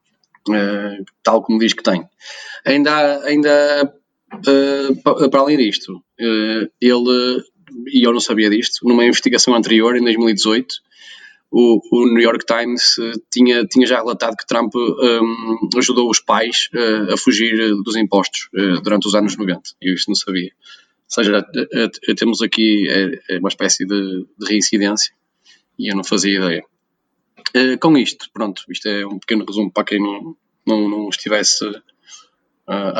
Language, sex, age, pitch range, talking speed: Portuguese, male, 20-39, 105-125 Hz, 170 wpm